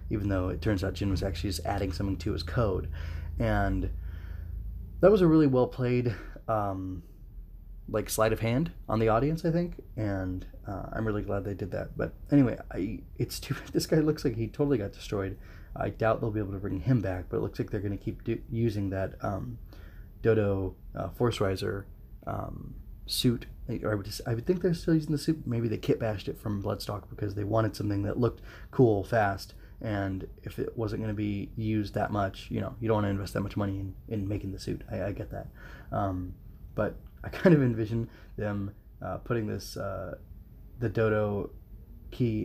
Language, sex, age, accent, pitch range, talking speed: English, male, 20-39, American, 95-120 Hz, 210 wpm